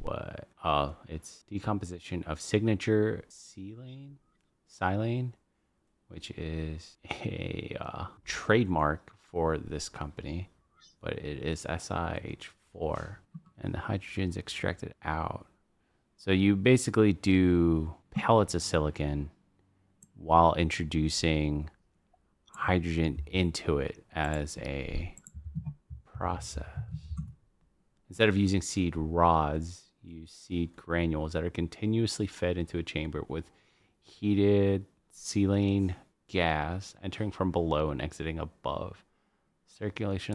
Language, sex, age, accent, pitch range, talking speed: English, male, 30-49, American, 80-100 Hz, 100 wpm